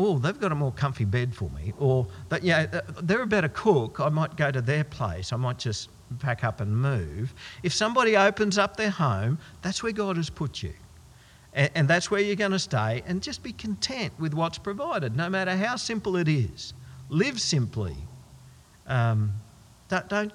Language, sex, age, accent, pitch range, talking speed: English, male, 50-69, Australian, 105-160 Hz, 200 wpm